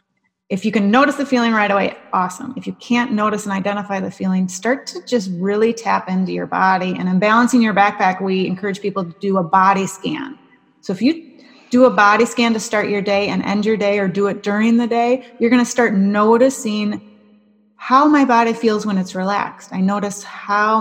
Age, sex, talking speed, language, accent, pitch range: 30-49, female, 215 wpm, English, American, 195-240 Hz